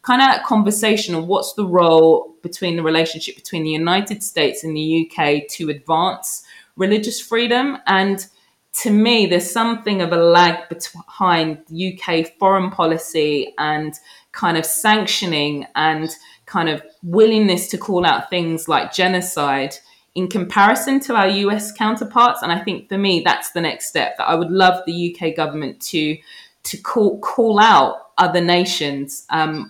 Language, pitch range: English, 160-200 Hz